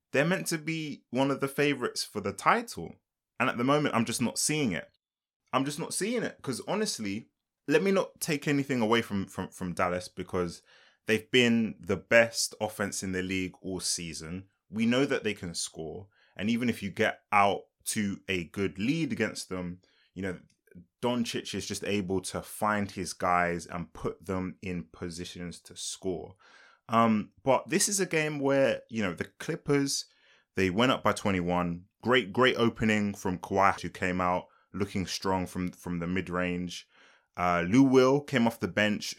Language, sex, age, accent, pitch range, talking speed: English, male, 20-39, British, 95-130 Hz, 185 wpm